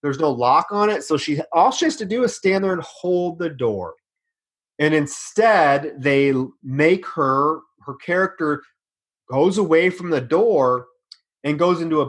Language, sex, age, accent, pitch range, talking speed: English, male, 30-49, American, 135-175 Hz, 175 wpm